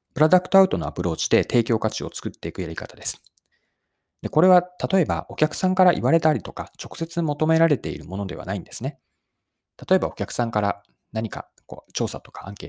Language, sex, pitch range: Japanese, male, 105-165 Hz